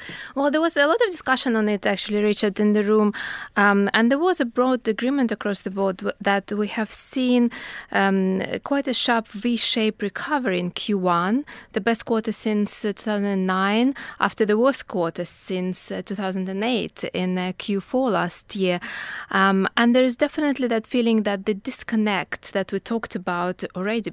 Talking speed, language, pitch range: 175 wpm, English, 190-230 Hz